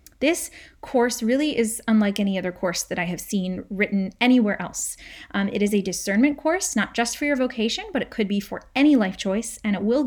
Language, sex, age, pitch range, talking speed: English, female, 20-39, 195-255 Hz, 220 wpm